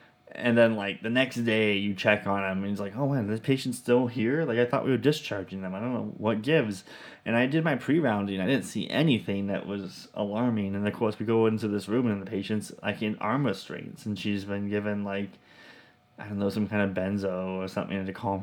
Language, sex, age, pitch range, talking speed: English, male, 20-39, 95-115 Hz, 240 wpm